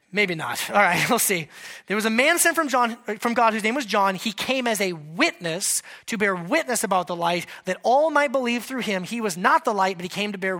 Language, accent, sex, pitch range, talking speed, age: English, American, male, 195-295 Hz, 260 wpm, 30-49